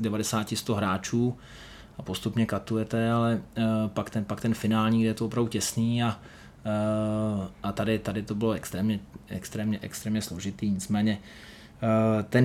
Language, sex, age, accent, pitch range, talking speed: Czech, male, 20-39, native, 110-115 Hz, 150 wpm